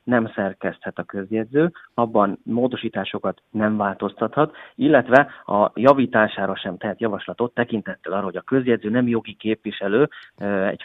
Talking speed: 125 wpm